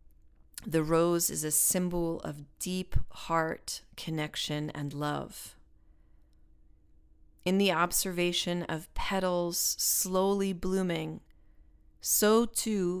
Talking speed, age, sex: 90 wpm, 30-49, female